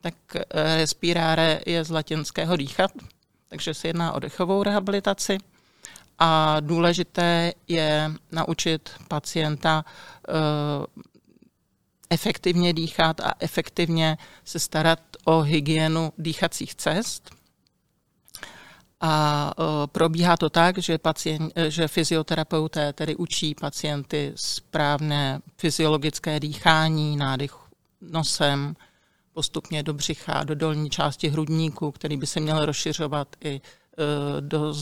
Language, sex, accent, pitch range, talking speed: Czech, male, native, 150-165 Hz, 95 wpm